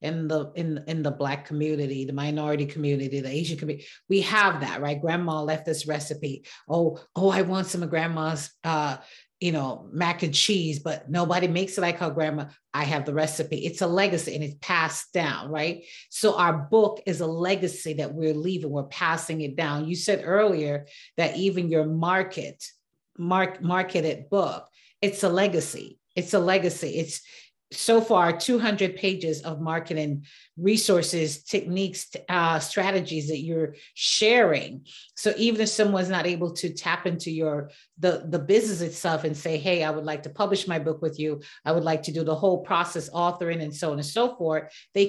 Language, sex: English, female